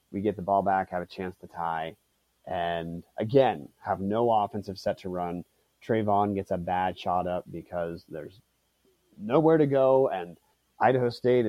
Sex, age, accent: male, 30-49, American